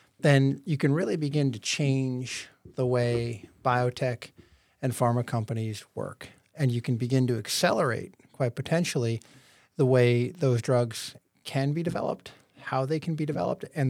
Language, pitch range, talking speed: English, 125-140 Hz, 150 wpm